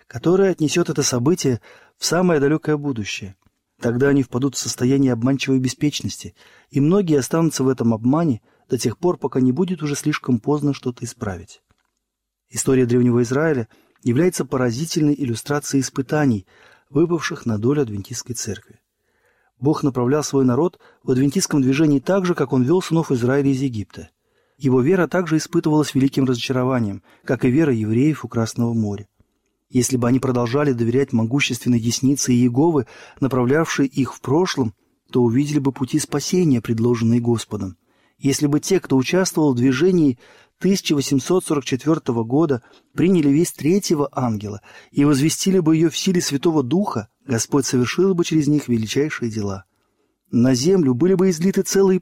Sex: male